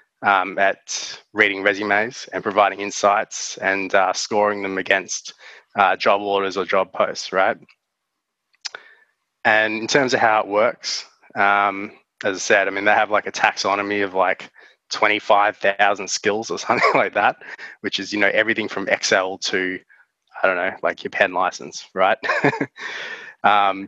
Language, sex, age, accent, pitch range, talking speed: English, male, 20-39, Australian, 100-115 Hz, 160 wpm